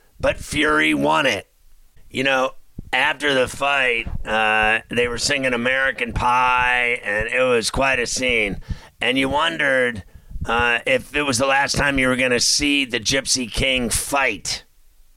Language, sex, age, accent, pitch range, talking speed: English, male, 50-69, American, 120-140 Hz, 160 wpm